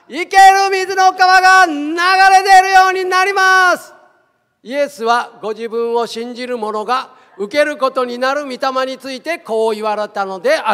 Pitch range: 220-345 Hz